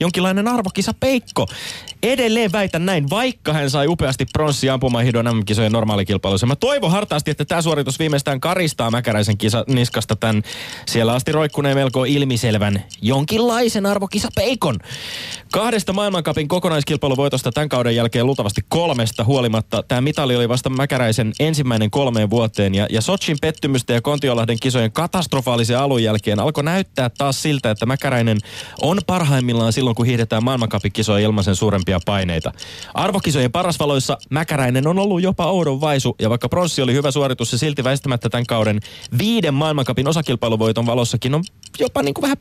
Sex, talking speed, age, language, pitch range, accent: male, 145 wpm, 20-39, Finnish, 115-160 Hz, native